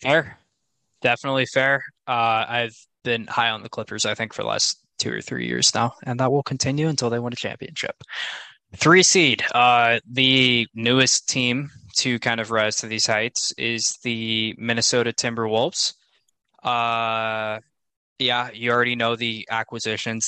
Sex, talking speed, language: male, 155 wpm, English